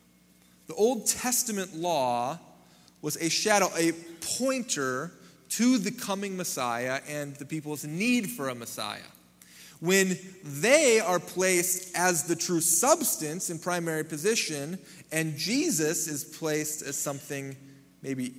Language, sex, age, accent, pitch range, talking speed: English, male, 30-49, American, 130-190 Hz, 125 wpm